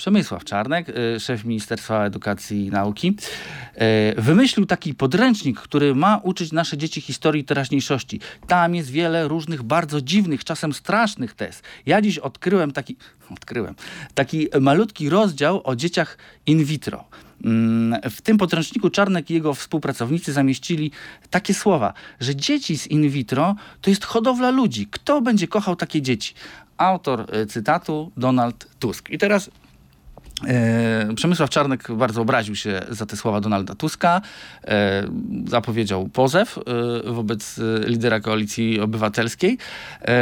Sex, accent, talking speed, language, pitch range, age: male, native, 125 wpm, Polish, 115-165 Hz, 40-59